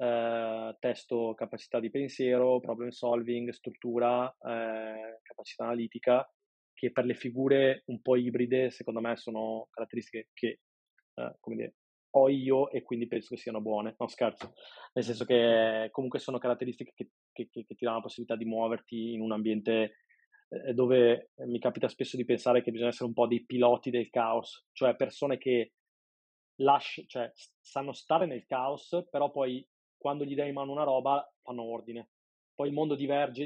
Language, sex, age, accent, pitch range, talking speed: Italian, male, 20-39, native, 115-135 Hz, 170 wpm